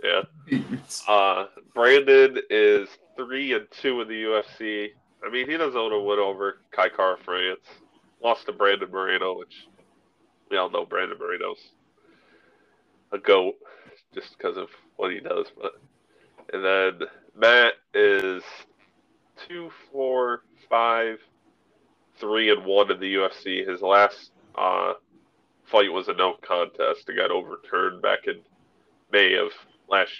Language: English